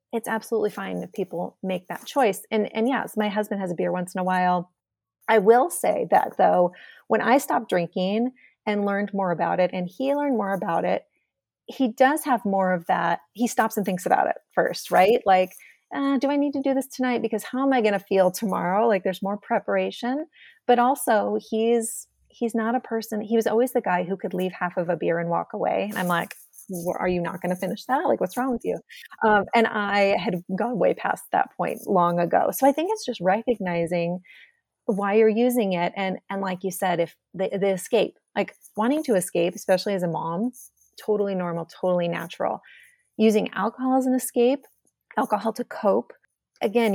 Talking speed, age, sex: 205 wpm, 30-49, female